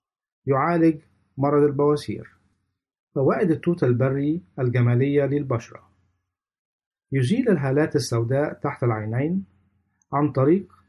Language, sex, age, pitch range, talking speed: Arabic, male, 50-69, 120-155 Hz, 85 wpm